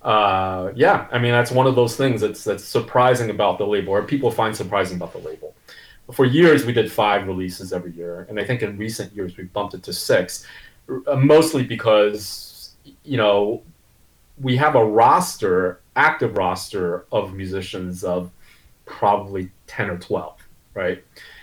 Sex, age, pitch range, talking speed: male, 30-49, 100-135 Hz, 165 wpm